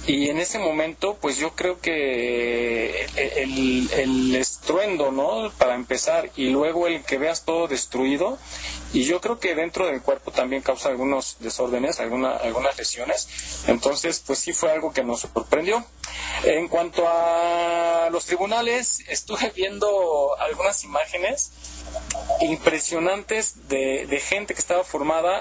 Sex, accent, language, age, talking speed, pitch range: male, Mexican, Spanish, 40-59, 135 wpm, 125-170 Hz